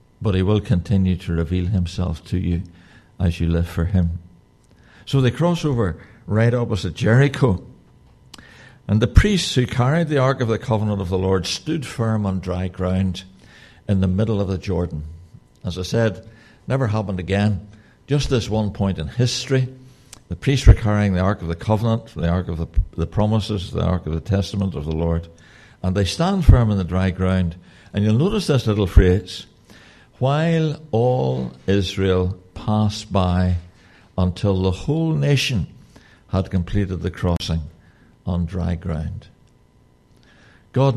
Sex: male